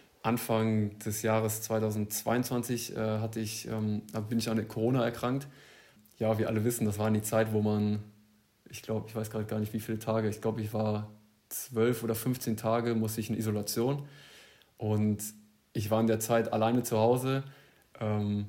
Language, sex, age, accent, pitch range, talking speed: German, male, 20-39, German, 105-115 Hz, 180 wpm